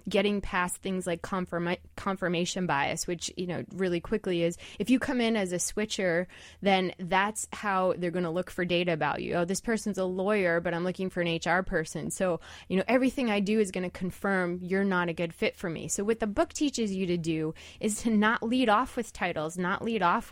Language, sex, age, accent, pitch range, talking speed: English, female, 20-39, American, 175-210 Hz, 230 wpm